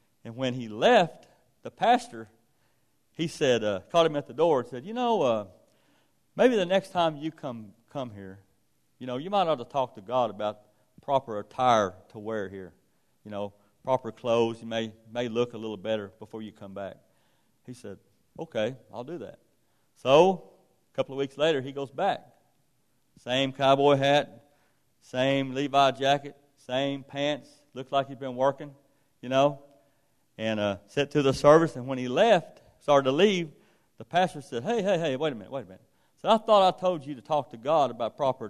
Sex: male